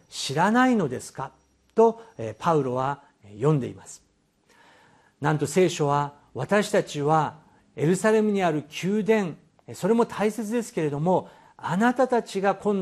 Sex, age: male, 50-69